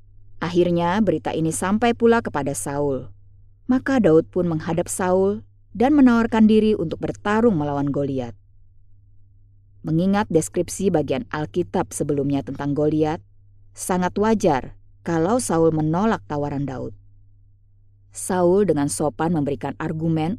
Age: 20-39